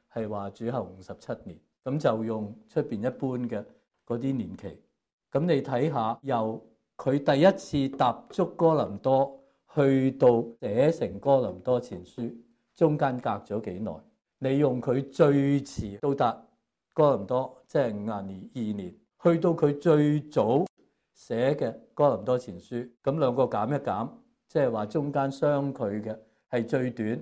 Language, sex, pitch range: English, male, 115-150 Hz